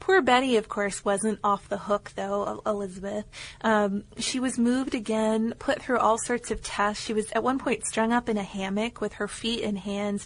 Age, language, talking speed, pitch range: 30-49, English, 210 wpm, 200-240 Hz